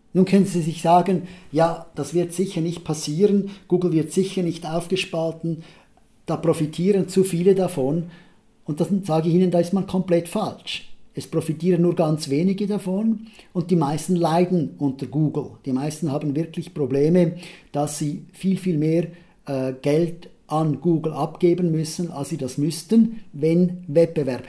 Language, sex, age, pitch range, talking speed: German, male, 50-69, 145-185 Hz, 160 wpm